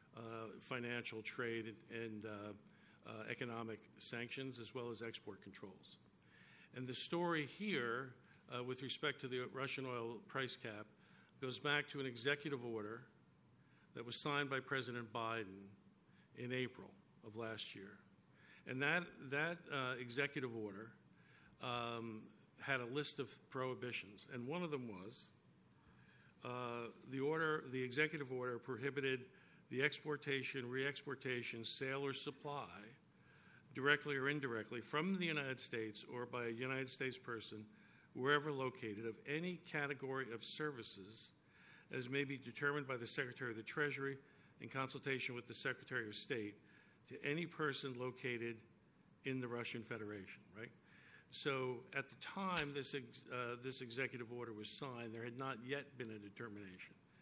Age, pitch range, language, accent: 50-69, 115-140 Hz, English, American